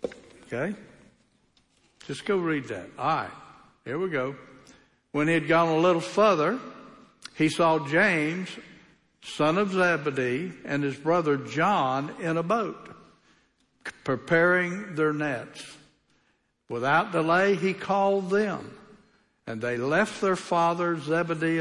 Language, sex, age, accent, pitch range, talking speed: English, male, 60-79, American, 140-165 Hz, 120 wpm